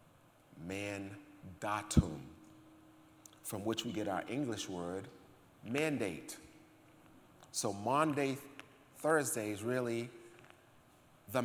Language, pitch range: English, 110-135 Hz